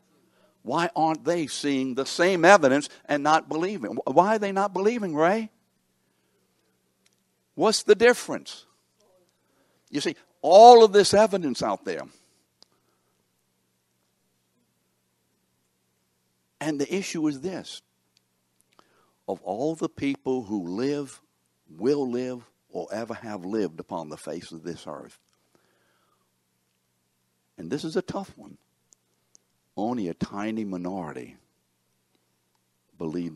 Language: English